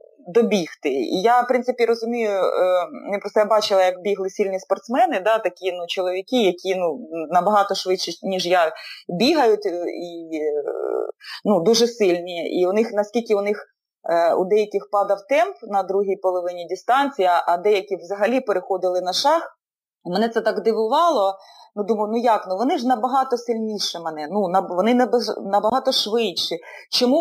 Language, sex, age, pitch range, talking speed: Ukrainian, female, 20-39, 195-255 Hz, 150 wpm